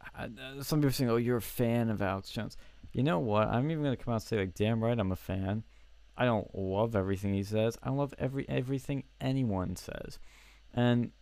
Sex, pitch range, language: male, 95-120 Hz, English